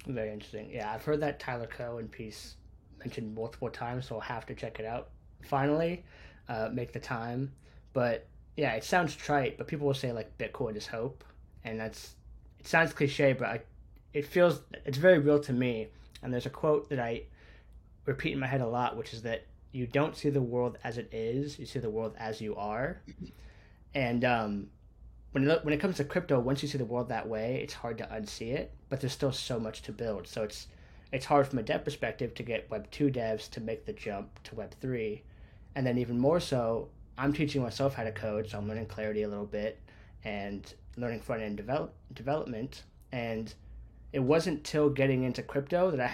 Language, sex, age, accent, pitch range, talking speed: English, male, 10-29, American, 110-140 Hz, 210 wpm